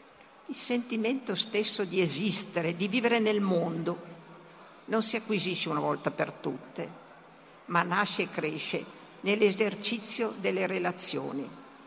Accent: native